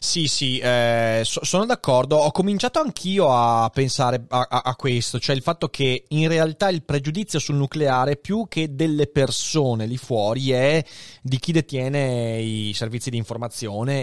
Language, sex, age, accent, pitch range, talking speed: Italian, male, 20-39, native, 115-145 Hz, 165 wpm